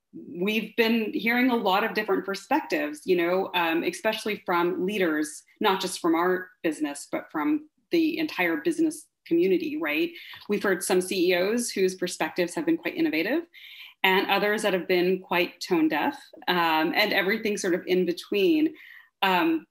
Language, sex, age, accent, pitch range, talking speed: English, female, 30-49, American, 175-285 Hz, 160 wpm